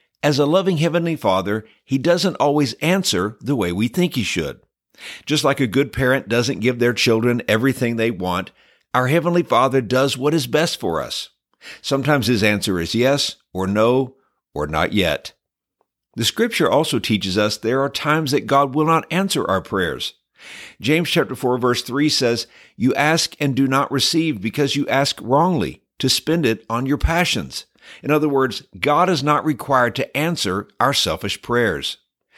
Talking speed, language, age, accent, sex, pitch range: 175 wpm, English, 60-79, American, male, 110-150 Hz